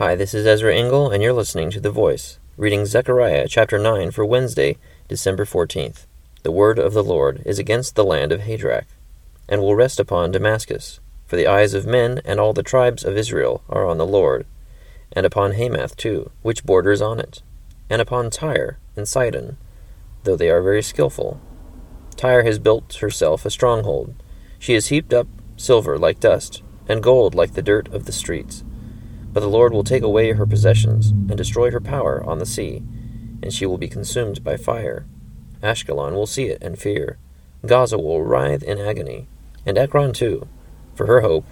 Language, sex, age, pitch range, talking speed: English, male, 30-49, 95-120 Hz, 185 wpm